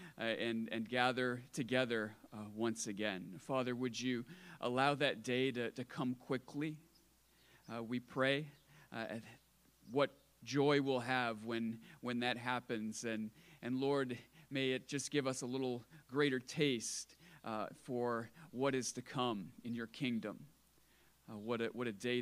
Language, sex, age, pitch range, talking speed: English, male, 40-59, 115-140 Hz, 155 wpm